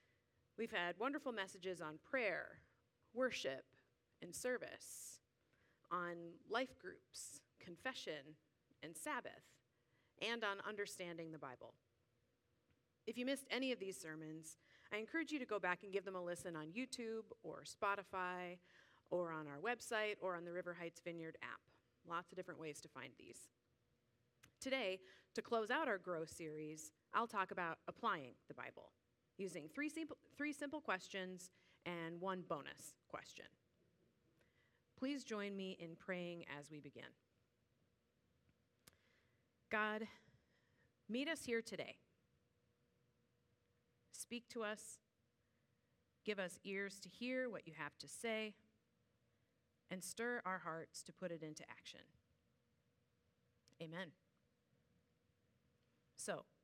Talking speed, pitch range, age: 125 wpm, 160-220 Hz, 30-49